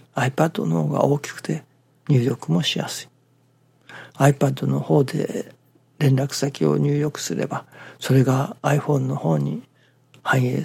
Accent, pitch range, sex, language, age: native, 130-160 Hz, male, Japanese, 60-79